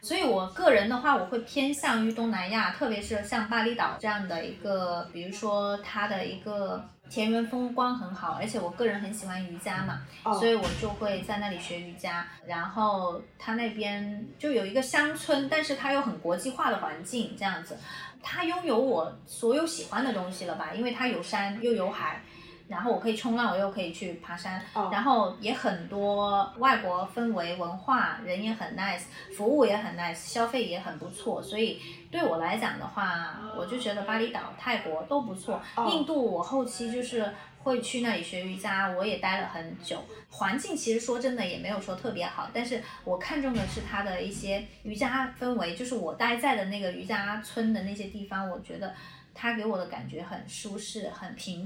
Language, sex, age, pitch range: Chinese, female, 30-49, 190-245 Hz